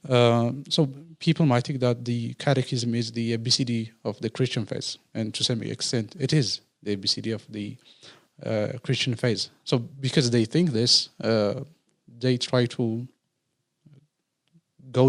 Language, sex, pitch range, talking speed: English, male, 115-140 Hz, 150 wpm